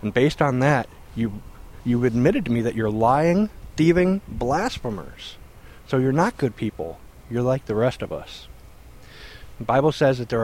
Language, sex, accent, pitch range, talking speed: English, male, American, 110-140 Hz, 170 wpm